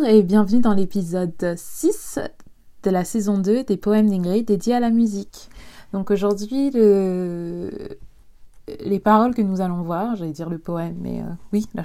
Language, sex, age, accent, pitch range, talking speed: French, female, 20-39, French, 190-220 Hz, 165 wpm